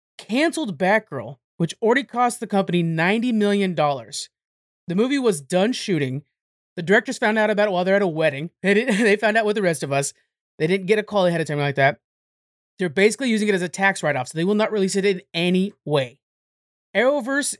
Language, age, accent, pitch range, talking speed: English, 30-49, American, 165-205 Hz, 210 wpm